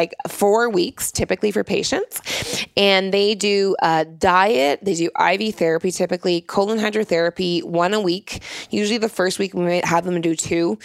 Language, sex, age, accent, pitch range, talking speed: English, female, 20-39, American, 170-205 Hz, 170 wpm